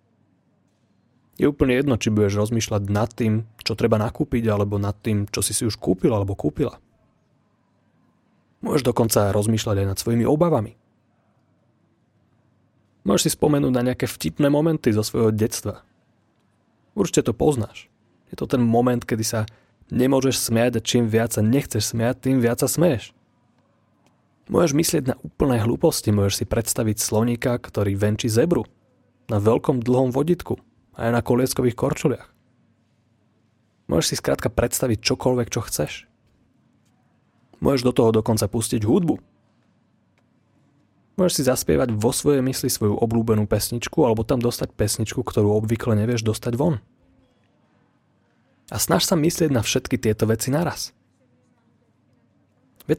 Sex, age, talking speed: male, 30-49, 135 wpm